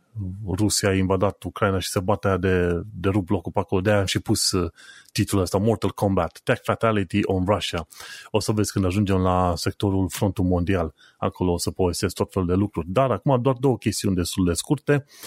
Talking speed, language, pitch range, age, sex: 200 wpm, Romanian, 95-120 Hz, 30-49, male